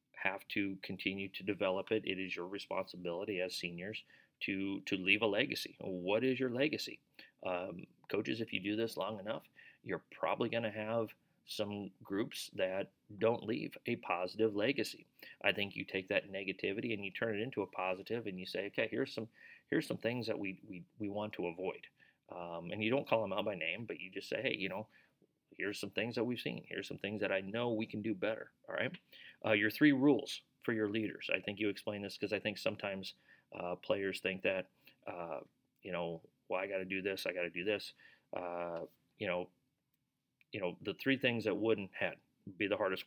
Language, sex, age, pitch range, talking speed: English, male, 30-49, 95-115 Hz, 215 wpm